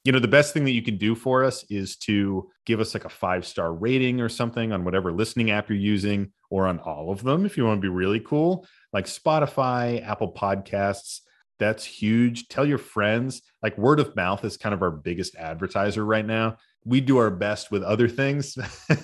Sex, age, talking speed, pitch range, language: male, 30-49, 215 wpm, 95-125 Hz, English